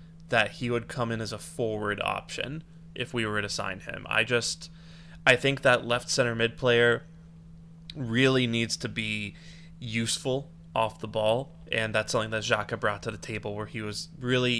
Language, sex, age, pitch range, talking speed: English, male, 20-39, 110-160 Hz, 185 wpm